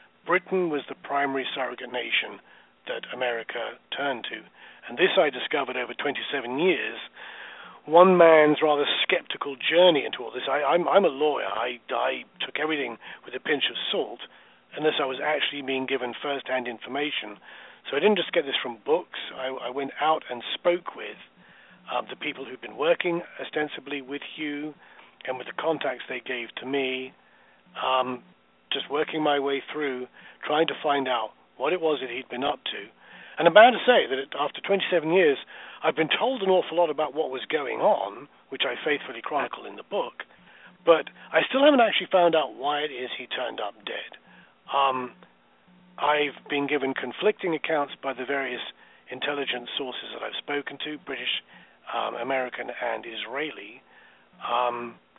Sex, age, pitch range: male, 40-59, 130-165 Hz